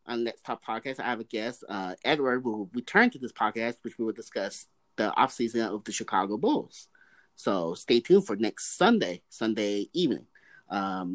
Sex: male